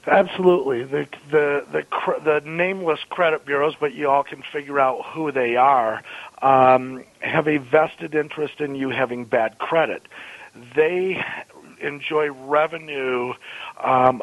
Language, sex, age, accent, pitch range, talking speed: English, male, 50-69, American, 125-145 Hz, 135 wpm